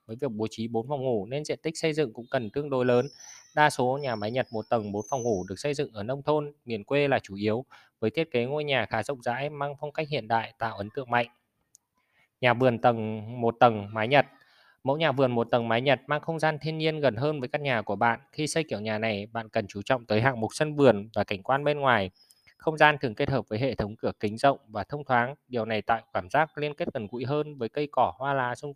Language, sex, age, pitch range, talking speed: Vietnamese, male, 20-39, 115-145 Hz, 270 wpm